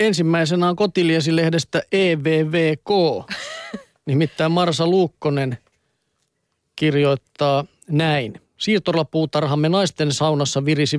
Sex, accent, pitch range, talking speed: male, native, 140-165 Hz, 70 wpm